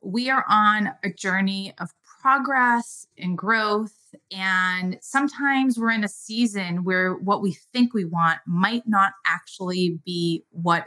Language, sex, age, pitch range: English, female, 30-49, 190-250 Hz